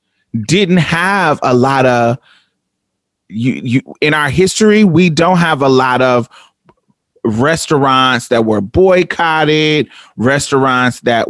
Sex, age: male, 30-49